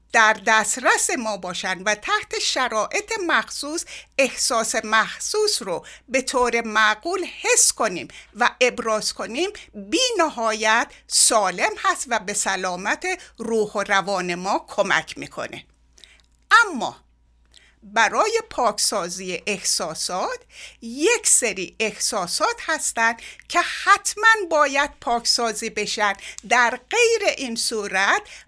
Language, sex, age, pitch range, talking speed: Persian, female, 60-79, 210-315 Hz, 105 wpm